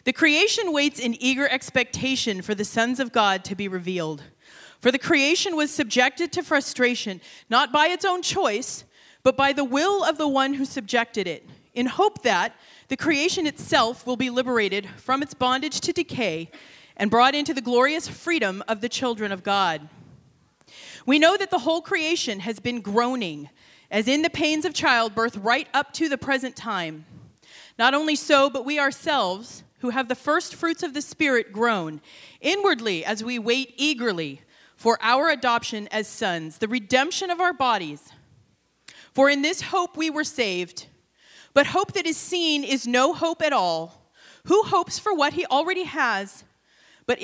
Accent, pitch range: American, 220-310 Hz